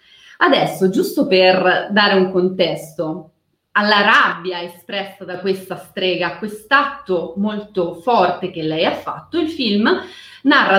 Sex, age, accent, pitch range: female, 30-49, native, 180-260 Hz